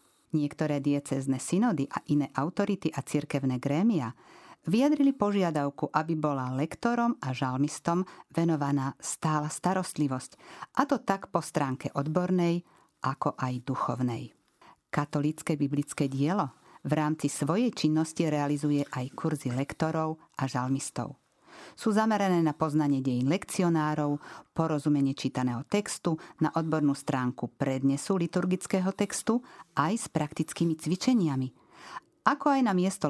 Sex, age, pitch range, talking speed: female, 50-69, 140-180 Hz, 115 wpm